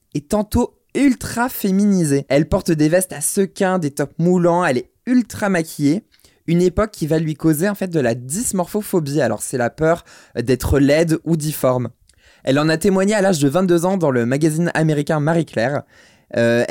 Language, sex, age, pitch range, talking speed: French, male, 20-39, 140-185 Hz, 185 wpm